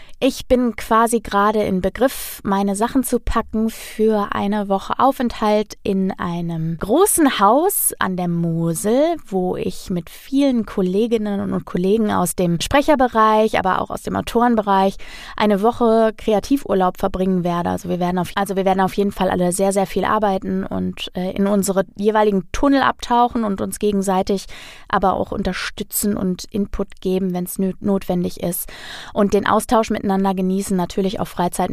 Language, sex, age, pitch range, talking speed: German, female, 20-39, 190-225 Hz, 150 wpm